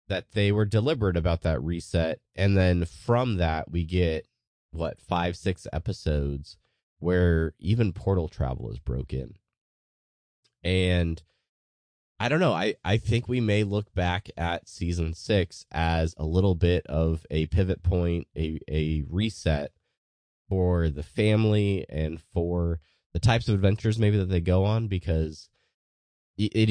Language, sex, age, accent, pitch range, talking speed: English, male, 20-39, American, 80-105 Hz, 145 wpm